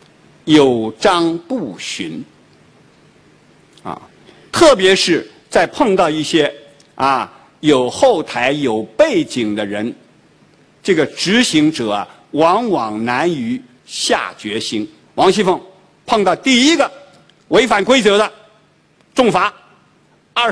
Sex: male